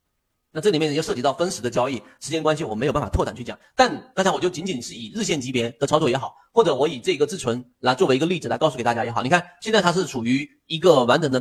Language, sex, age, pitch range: Chinese, male, 30-49, 130-195 Hz